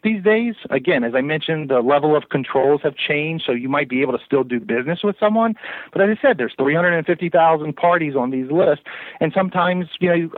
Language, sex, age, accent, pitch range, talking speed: English, male, 40-59, American, 130-170 Hz, 235 wpm